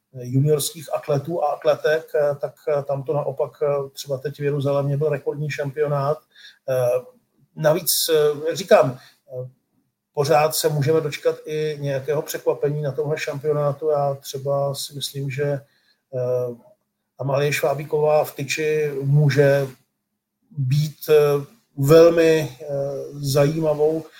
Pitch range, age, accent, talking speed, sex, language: 140-160 Hz, 40-59, native, 100 wpm, male, Czech